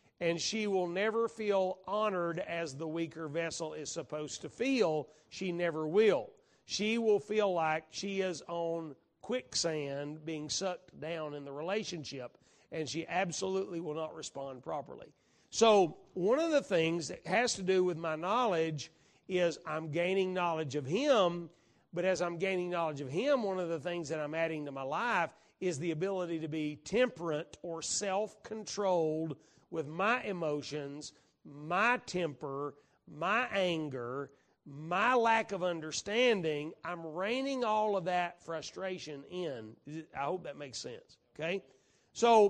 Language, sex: English, male